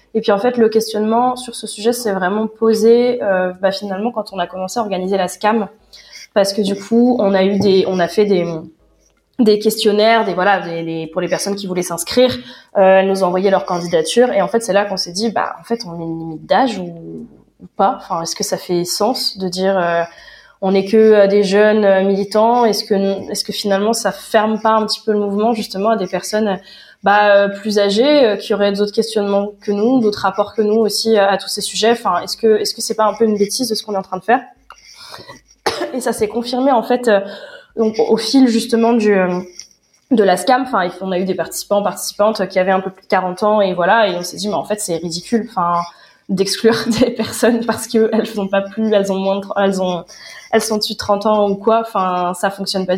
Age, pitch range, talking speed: 20-39, 190-225 Hz, 240 wpm